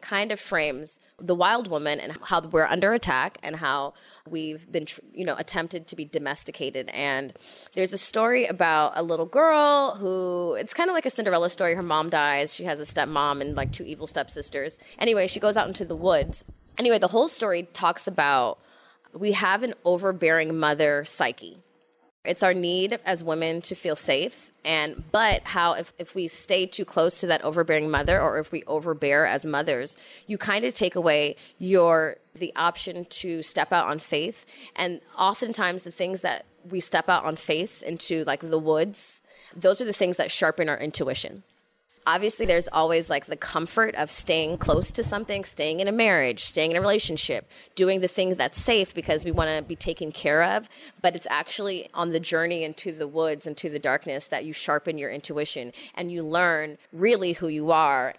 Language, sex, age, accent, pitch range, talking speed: English, female, 20-39, American, 155-190 Hz, 190 wpm